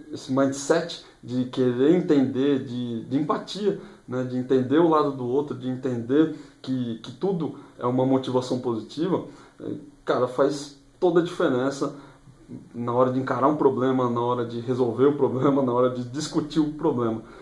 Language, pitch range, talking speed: Portuguese, 130-150 Hz, 160 wpm